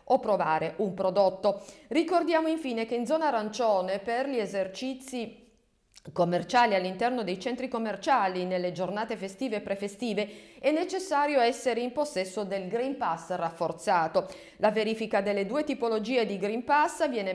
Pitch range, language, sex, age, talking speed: 185-255 Hz, Italian, female, 50-69, 140 wpm